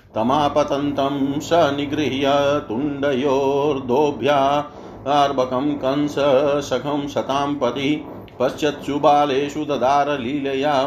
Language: Hindi